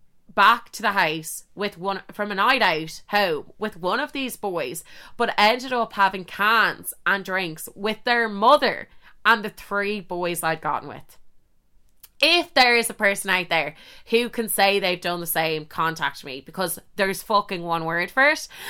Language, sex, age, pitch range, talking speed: English, female, 20-39, 170-230 Hz, 180 wpm